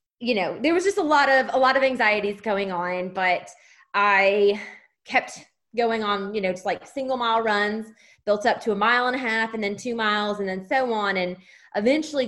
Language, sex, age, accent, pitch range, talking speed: English, female, 20-39, American, 185-235 Hz, 215 wpm